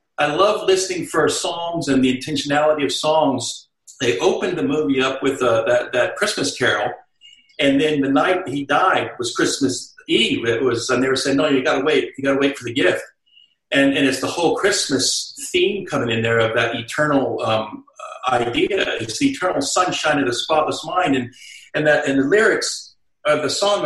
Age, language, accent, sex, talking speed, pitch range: 50-69, English, American, male, 195 wpm, 130-190 Hz